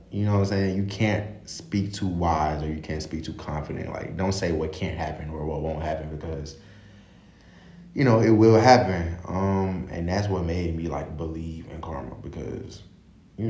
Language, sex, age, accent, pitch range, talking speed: English, male, 20-39, American, 75-95 Hz, 195 wpm